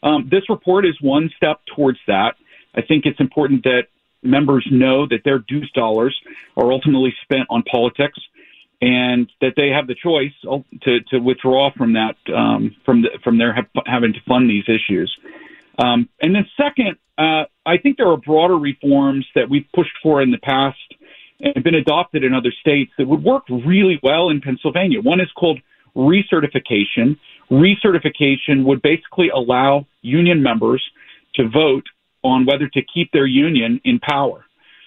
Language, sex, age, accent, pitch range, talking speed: English, male, 40-59, American, 130-170 Hz, 170 wpm